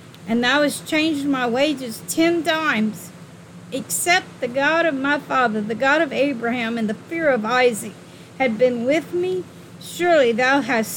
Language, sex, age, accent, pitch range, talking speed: English, female, 50-69, American, 225-285 Hz, 165 wpm